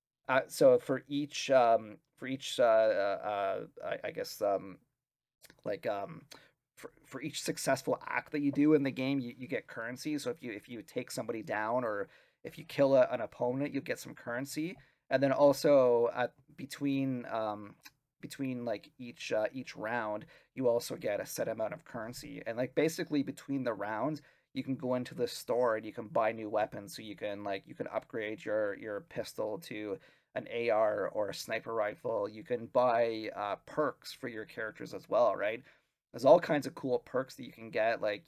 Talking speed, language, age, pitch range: 200 wpm, English, 30-49, 120-145 Hz